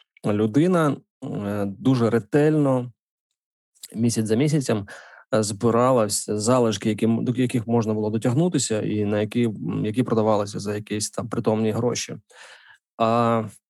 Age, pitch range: 20-39, 110-130 Hz